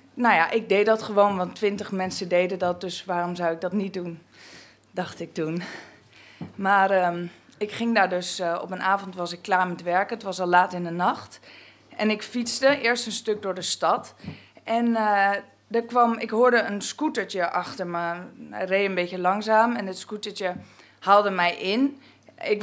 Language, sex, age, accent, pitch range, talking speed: Dutch, female, 20-39, Dutch, 185-240 Hz, 190 wpm